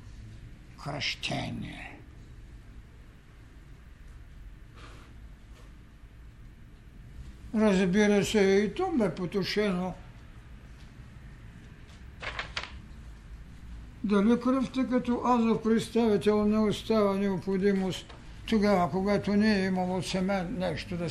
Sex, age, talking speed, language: male, 60-79, 70 wpm, Bulgarian